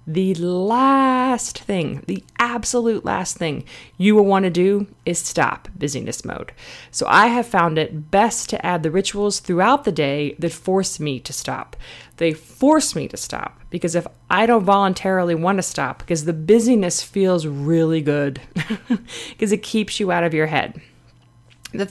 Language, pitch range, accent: English, 160-210 Hz, American